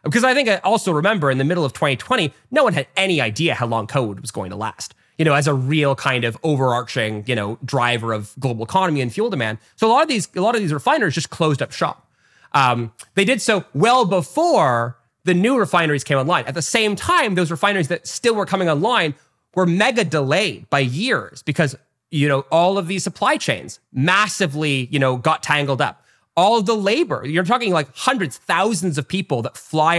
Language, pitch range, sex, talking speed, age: English, 135-195 Hz, male, 215 wpm, 30-49